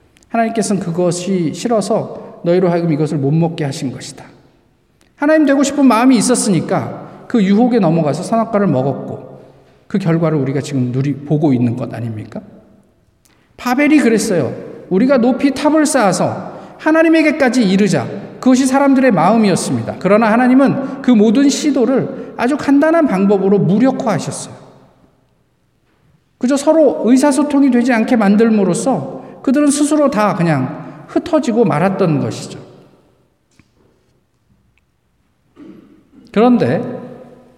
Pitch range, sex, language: 160-250 Hz, male, Korean